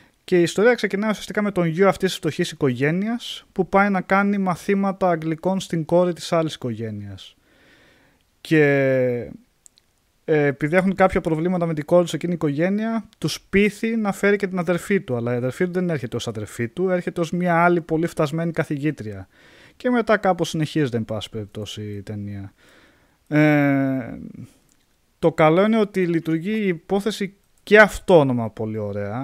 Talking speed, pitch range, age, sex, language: 165 wpm, 115-180 Hz, 20-39, male, Greek